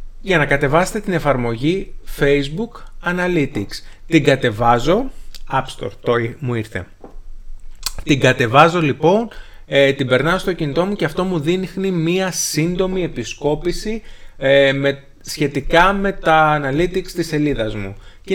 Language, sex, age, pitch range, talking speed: Greek, male, 30-49, 125-165 Hz, 130 wpm